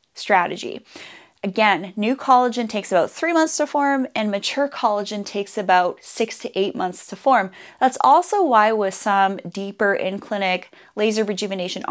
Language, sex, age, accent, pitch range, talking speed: English, female, 30-49, American, 190-240 Hz, 155 wpm